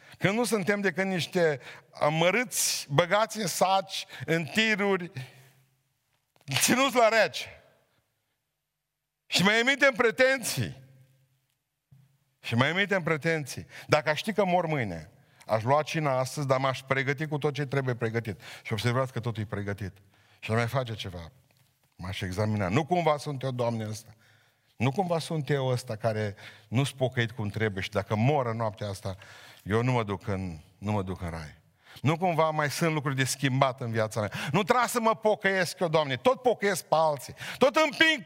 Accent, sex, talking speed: native, male, 165 wpm